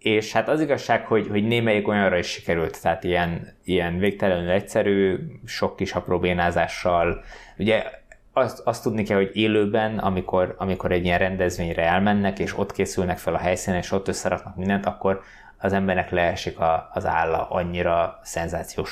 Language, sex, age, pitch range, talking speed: Hungarian, male, 20-39, 90-100 Hz, 160 wpm